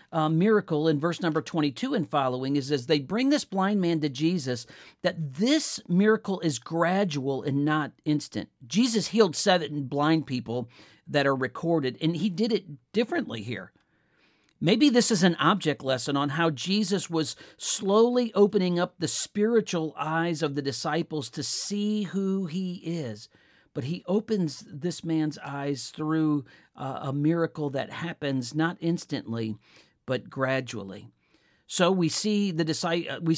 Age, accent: 50-69, American